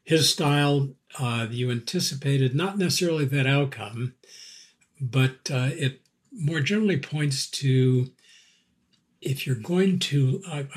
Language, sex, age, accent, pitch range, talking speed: English, male, 60-79, American, 130-160 Hz, 115 wpm